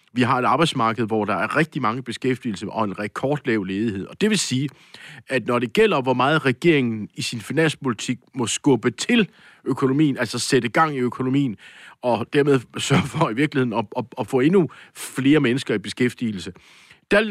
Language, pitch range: Danish, 115-145 Hz